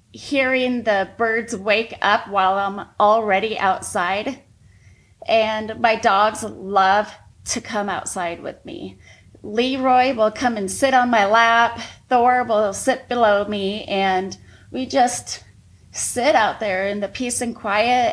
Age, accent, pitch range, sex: 30-49, American, 195-245 Hz, female